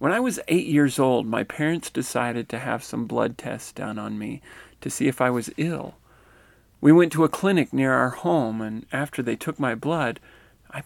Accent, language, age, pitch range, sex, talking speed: American, English, 40-59, 120-160 Hz, male, 210 wpm